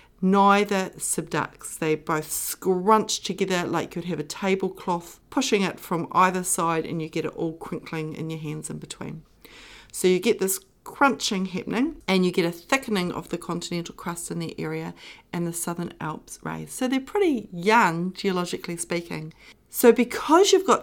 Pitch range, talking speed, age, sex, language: 170-210 Hz, 175 wpm, 40-59, female, English